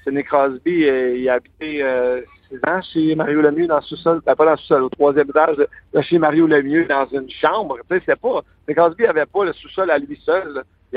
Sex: male